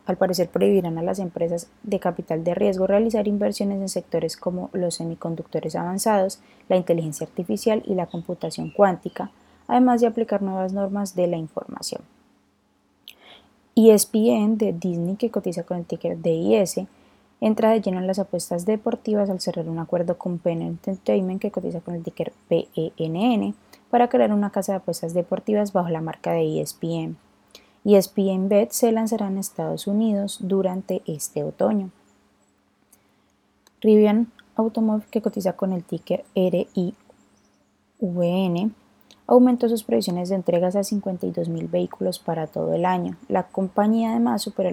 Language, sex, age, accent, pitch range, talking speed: Spanish, female, 20-39, Colombian, 170-210 Hz, 145 wpm